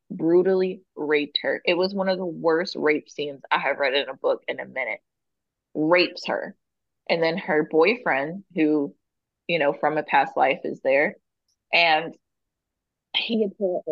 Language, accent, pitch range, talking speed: English, American, 150-185 Hz, 165 wpm